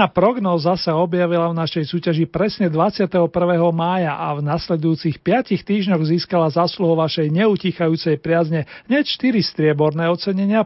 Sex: male